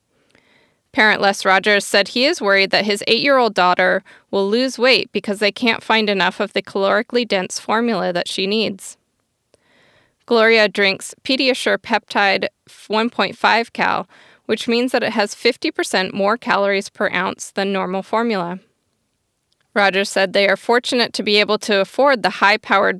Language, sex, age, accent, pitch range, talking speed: English, female, 20-39, American, 195-230 Hz, 150 wpm